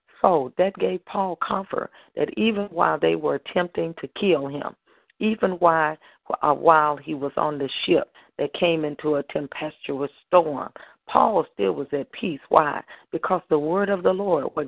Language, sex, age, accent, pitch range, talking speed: English, female, 40-59, American, 145-180 Hz, 170 wpm